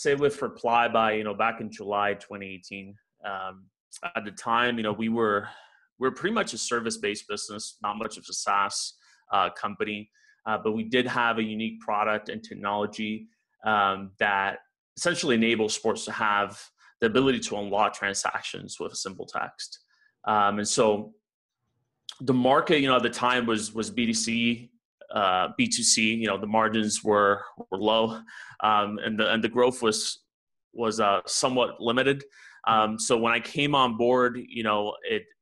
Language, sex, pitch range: English, male, 105-120 Hz